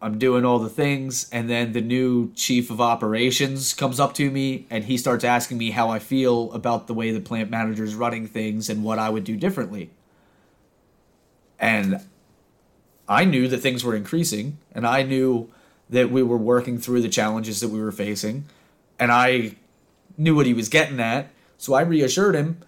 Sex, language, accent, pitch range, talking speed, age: male, English, American, 115-135 Hz, 190 wpm, 30-49